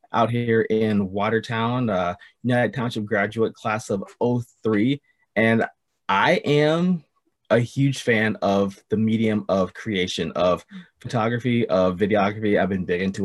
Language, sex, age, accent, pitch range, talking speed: English, male, 30-49, American, 105-120 Hz, 135 wpm